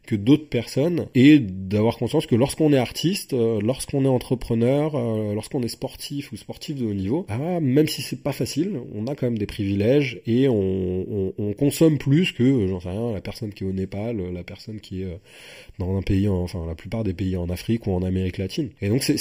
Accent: French